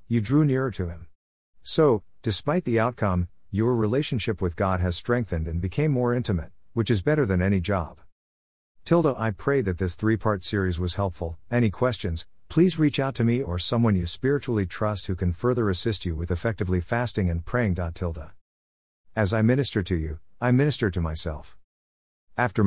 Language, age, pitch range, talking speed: English, 50-69, 85-115 Hz, 175 wpm